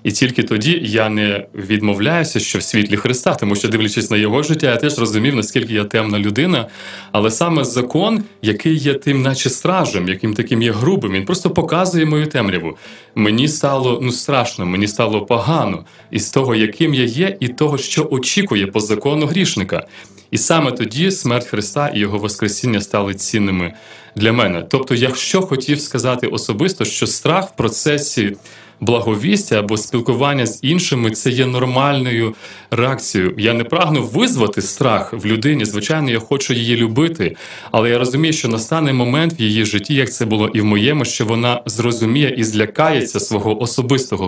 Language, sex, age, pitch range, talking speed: Ukrainian, male, 30-49, 110-145 Hz, 170 wpm